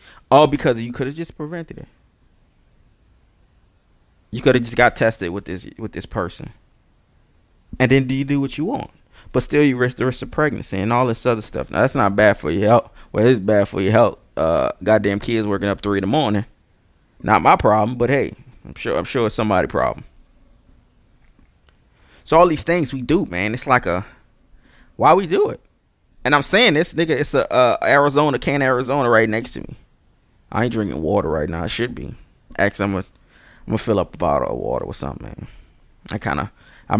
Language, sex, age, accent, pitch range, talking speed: English, male, 20-39, American, 90-135 Hz, 205 wpm